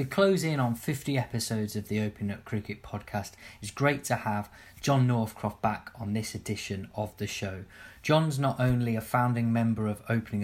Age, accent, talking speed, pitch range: 20-39, British, 190 wpm, 105-130 Hz